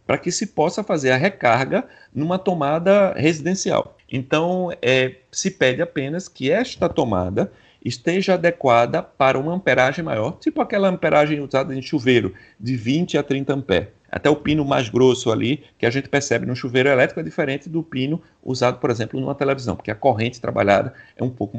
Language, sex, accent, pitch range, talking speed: Portuguese, male, Brazilian, 130-175 Hz, 175 wpm